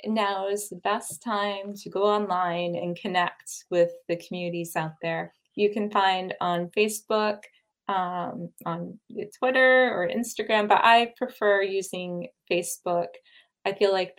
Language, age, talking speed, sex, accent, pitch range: English, 20-39, 140 wpm, female, American, 180-215 Hz